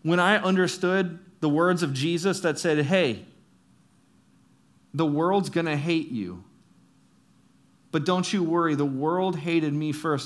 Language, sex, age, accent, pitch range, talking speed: English, male, 40-59, American, 135-185 Hz, 145 wpm